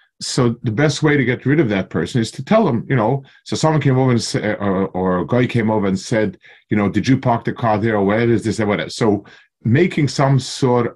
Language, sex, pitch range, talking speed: English, male, 105-135 Hz, 275 wpm